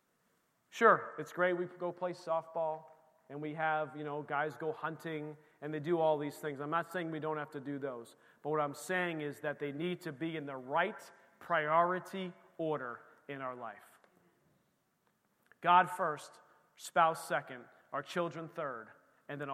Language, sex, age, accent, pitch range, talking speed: English, male, 40-59, American, 145-180 Hz, 175 wpm